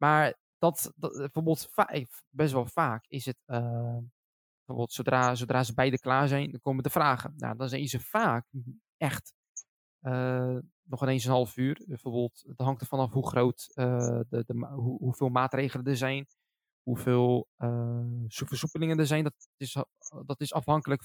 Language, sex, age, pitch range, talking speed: Dutch, male, 20-39, 125-145 Hz, 170 wpm